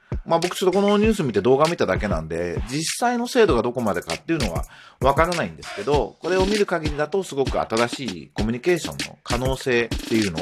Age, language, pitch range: 40-59, Japanese, 110-175 Hz